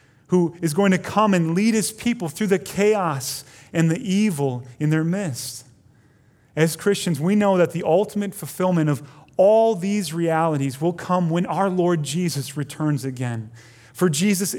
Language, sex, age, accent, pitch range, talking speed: English, male, 30-49, American, 145-200 Hz, 165 wpm